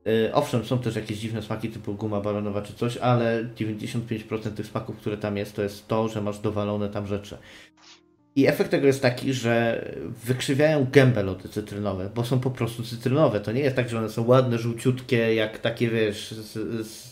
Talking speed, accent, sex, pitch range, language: 195 wpm, native, male, 105-130 Hz, Polish